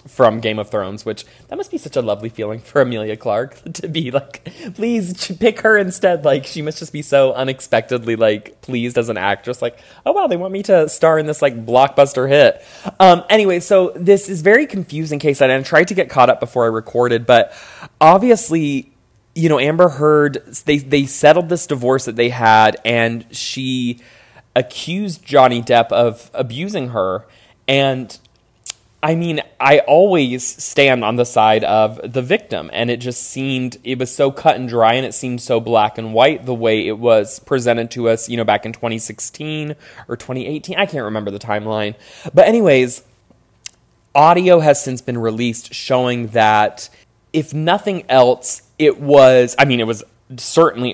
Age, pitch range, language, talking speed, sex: 20-39, 115-150 Hz, English, 180 wpm, male